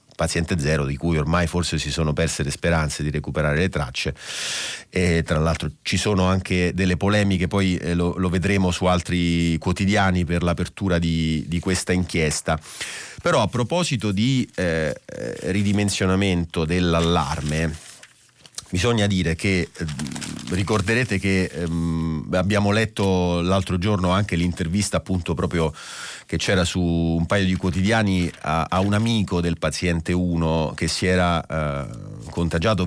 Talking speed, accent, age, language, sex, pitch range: 140 wpm, native, 30-49, Italian, male, 80-95 Hz